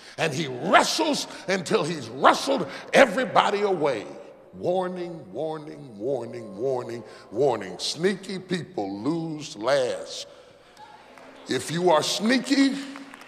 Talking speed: 95 wpm